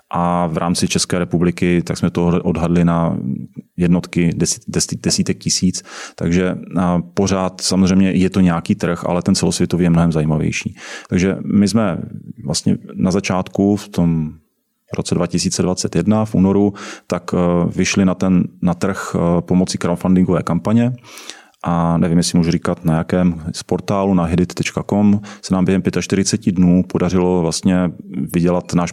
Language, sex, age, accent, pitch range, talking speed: Czech, male, 30-49, native, 85-95 Hz, 140 wpm